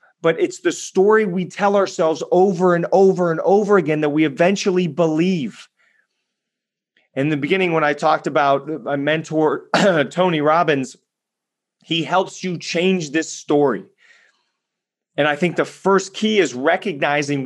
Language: English